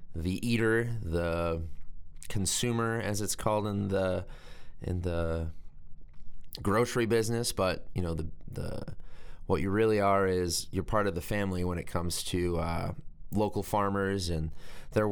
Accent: American